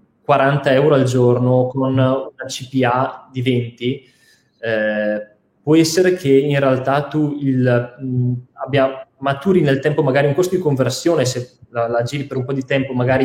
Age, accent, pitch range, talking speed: 20-39, native, 125-140 Hz, 170 wpm